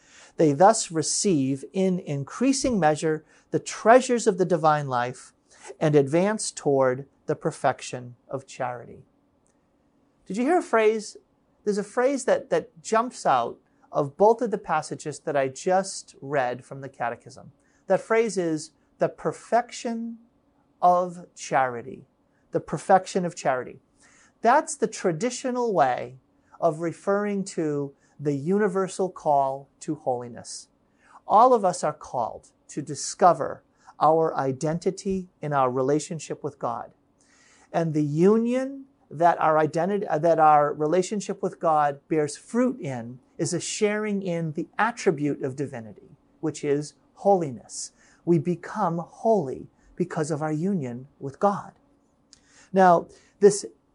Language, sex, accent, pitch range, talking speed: English, male, American, 145-215 Hz, 130 wpm